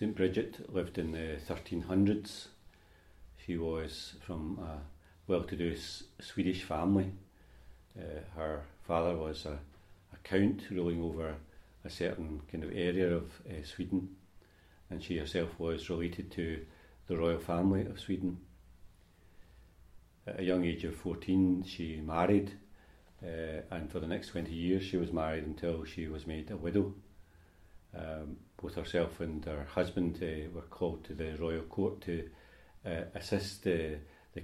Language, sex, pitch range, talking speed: English, male, 80-95 Hz, 145 wpm